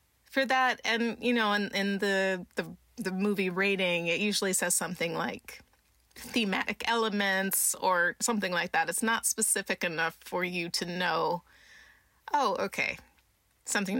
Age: 20-39